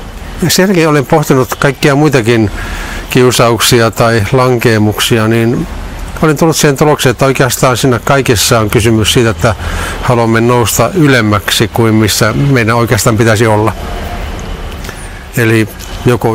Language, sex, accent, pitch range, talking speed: Finnish, male, native, 100-130 Hz, 115 wpm